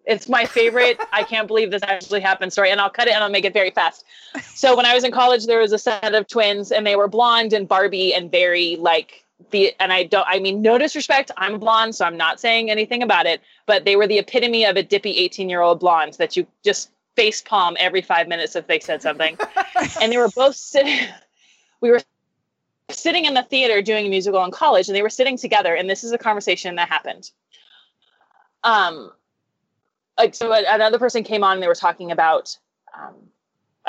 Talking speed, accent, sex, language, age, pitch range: 220 wpm, American, female, English, 20-39, 185-240 Hz